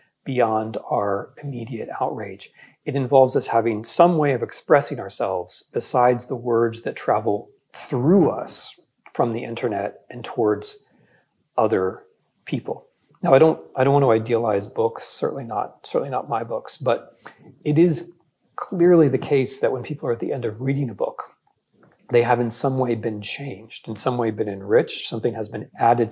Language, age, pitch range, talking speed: English, 40-59, 115-150 Hz, 170 wpm